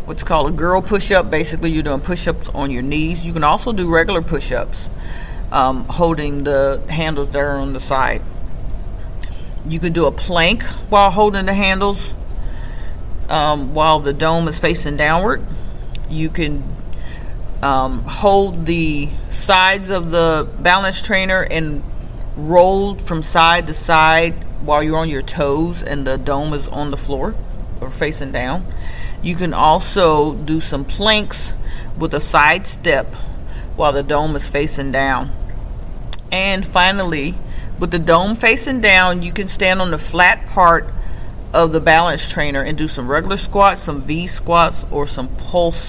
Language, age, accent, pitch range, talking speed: English, 40-59, American, 145-180 Hz, 155 wpm